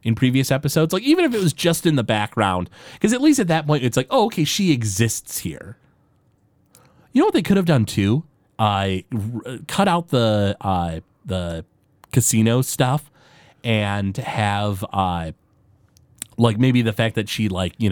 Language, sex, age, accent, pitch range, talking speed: English, male, 30-49, American, 95-130 Hz, 180 wpm